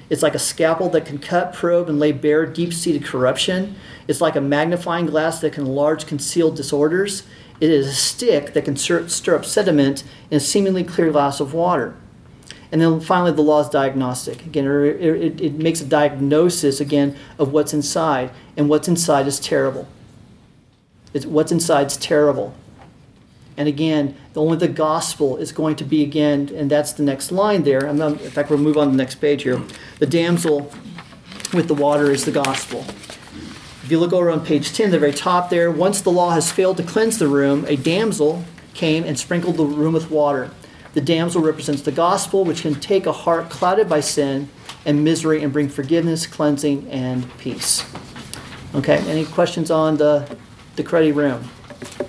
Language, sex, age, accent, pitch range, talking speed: English, male, 40-59, American, 145-165 Hz, 185 wpm